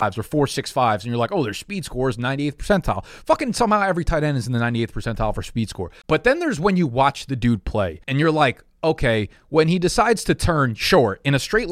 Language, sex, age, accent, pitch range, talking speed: English, male, 30-49, American, 120-165 Hz, 245 wpm